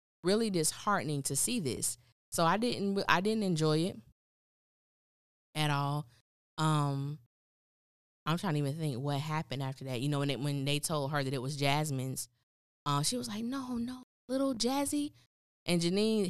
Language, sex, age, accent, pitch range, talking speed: English, female, 20-39, American, 140-175 Hz, 165 wpm